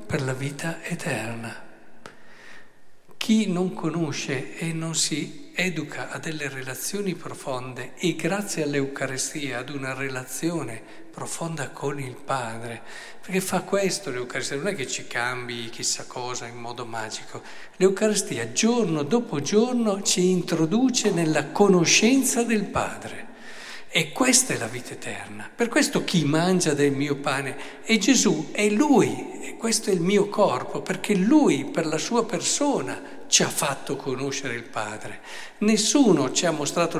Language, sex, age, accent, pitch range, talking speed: Italian, male, 50-69, native, 140-205 Hz, 140 wpm